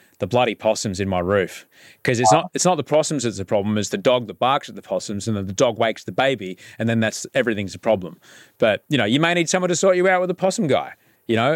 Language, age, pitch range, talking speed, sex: English, 30-49, 115-165 Hz, 280 wpm, male